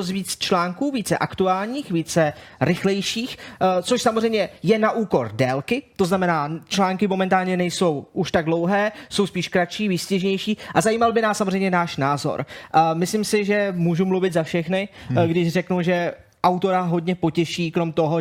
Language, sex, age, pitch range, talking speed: Czech, male, 20-39, 165-190 Hz, 155 wpm